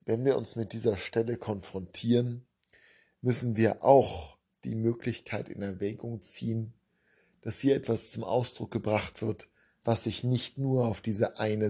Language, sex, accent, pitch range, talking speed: German, male, German, 100-125 Hz, 150 wpm